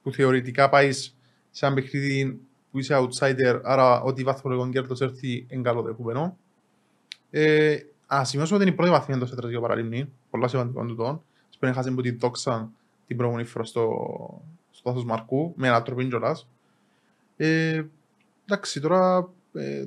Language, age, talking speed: Greek, 20-39, 150 wpm